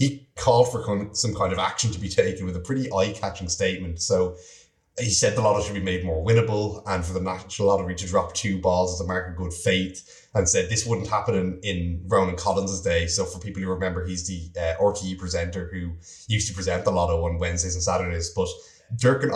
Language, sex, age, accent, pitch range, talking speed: English, male, 20-39, Irish, 90-100 Hz, 225 wpm